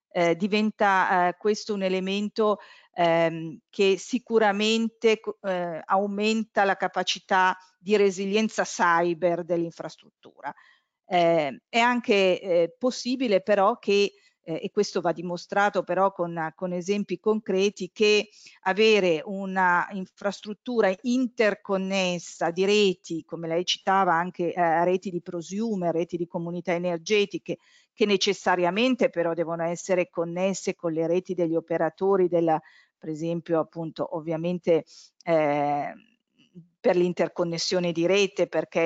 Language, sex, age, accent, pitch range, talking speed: Italian, female, 50-69, native, 175-210 Hz, 115 wpm